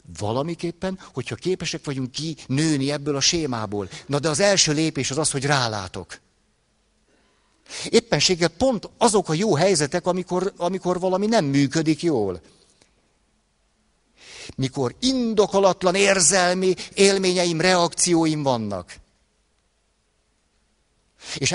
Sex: male